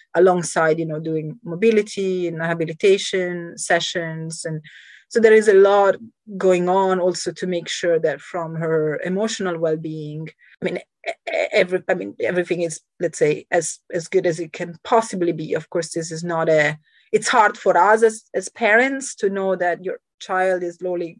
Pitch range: 165-210 Hz